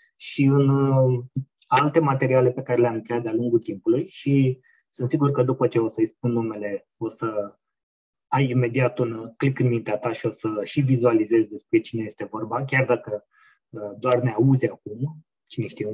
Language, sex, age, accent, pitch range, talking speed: Romanian, male, 20-39, native, 115-145 Hz, 175 wpm